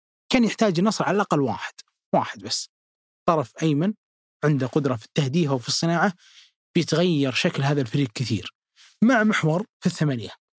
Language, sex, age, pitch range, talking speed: Arabic, male, 20-39, 135-170 Hz, 140 wpm